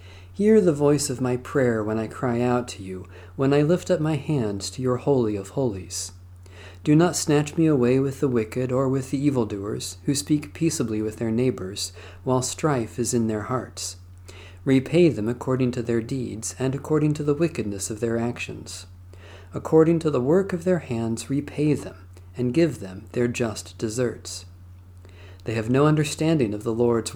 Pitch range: 95-140 Hz